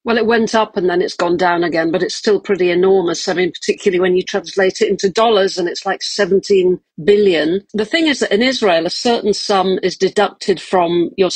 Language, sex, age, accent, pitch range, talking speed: English, female, 50-69, British, 180-215 Hz, 220 wpm